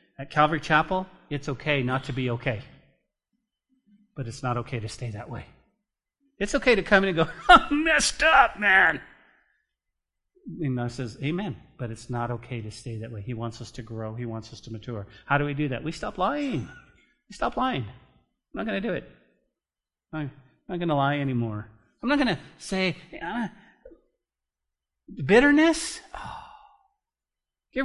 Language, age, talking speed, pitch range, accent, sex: English, 40-59, 175 wpm, 115-185 Hz, American, male